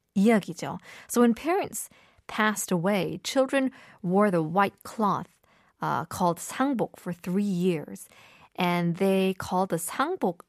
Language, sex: Korean, female